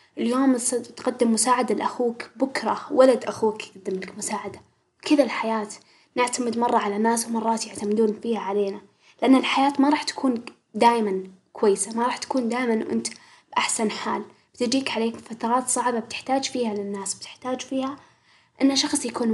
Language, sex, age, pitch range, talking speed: Arabic, female, 10-29, 215-270 Hz, 145 wpm